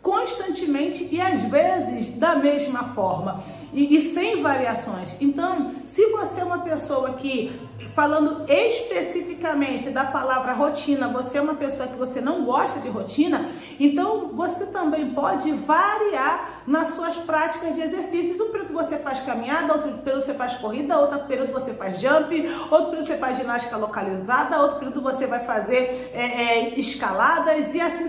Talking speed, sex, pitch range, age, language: 155 wpm, female, 270-340 Hz, 40-59, Portuguese